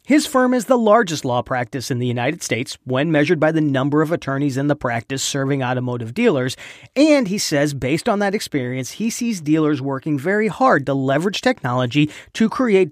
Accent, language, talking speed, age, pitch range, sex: American, English, 195 wpm, 40-59, 130-200 Hz, male